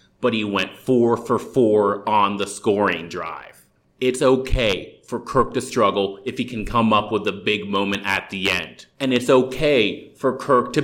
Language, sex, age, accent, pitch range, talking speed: English, male, 30-49, American, 100-120 Hz, 175 wpm